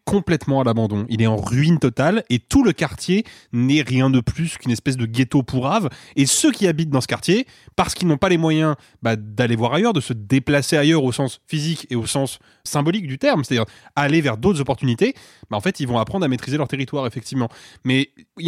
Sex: male